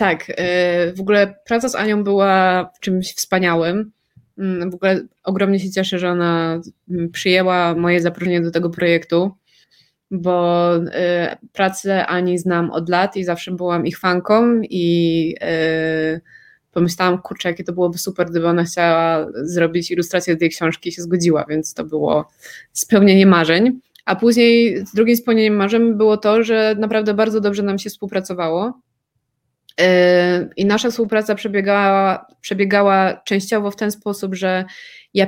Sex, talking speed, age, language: female, 140 wpm, 20-39, Polish